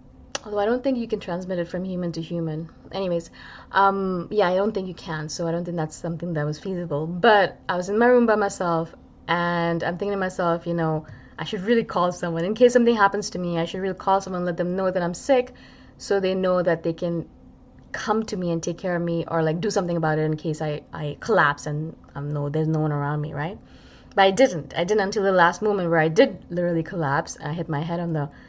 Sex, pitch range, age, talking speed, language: female, 160-195 Hz, 20-39, 255 wpm, English